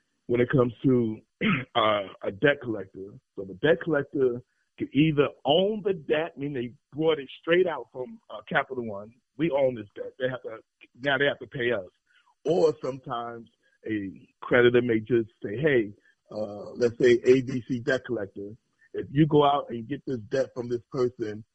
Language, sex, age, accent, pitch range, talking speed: English, male, 40-59, American, 110-145 Hz, 175 wpm